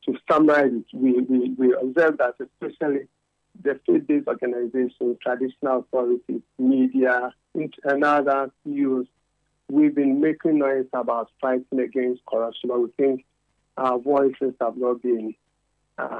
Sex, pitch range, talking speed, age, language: male, 125-150 Hz, 120 wpm, 50-69, English